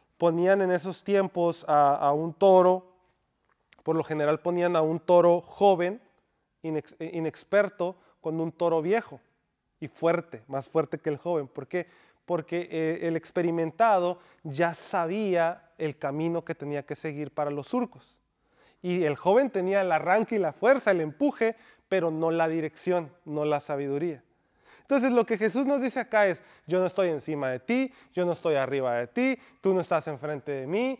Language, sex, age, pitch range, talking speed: English, male, 30-49, 160-200 Hz, 170 wpm